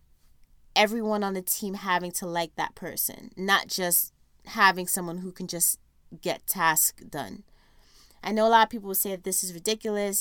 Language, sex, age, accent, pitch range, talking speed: English, female, 20-39, American, 170-205 Hz, 180 wpm